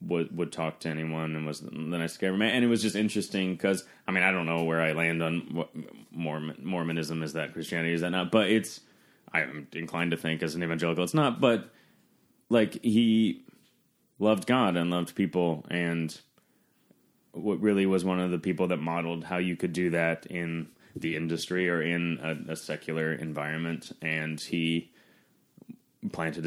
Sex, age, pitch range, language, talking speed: male, 30-49, 80-90 Hz, English, 180 wpm